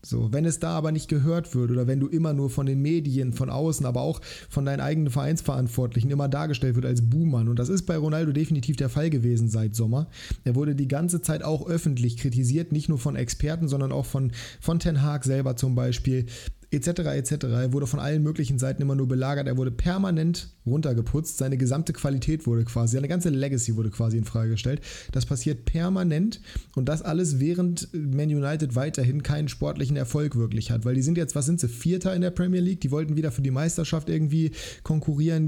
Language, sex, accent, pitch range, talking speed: German, male, German, 125-155 Hz, 205 wpm